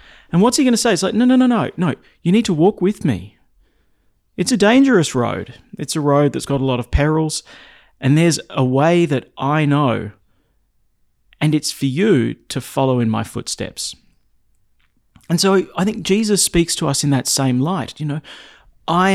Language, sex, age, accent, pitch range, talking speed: English, male, 30-49, Australian, 115-180 Hz, 195 wpm